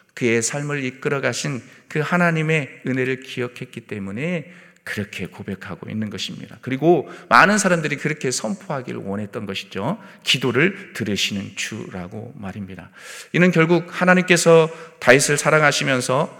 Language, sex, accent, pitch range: Korean, male, native, 120-165 Hz